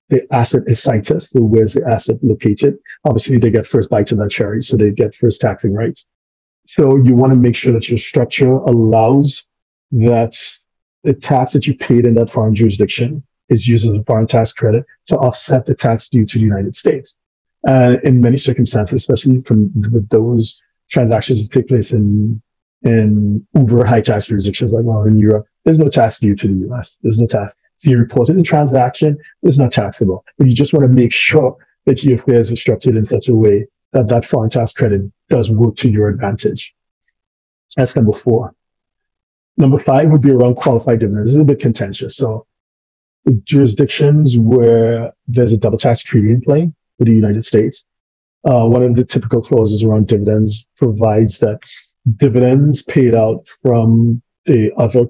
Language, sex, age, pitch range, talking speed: English, male, 40-59, 110-130 Hz, 185 wpm